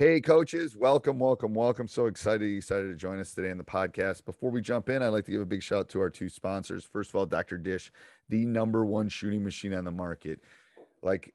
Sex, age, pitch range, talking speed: male, 30-49, 90-110 Hz, 240 wpm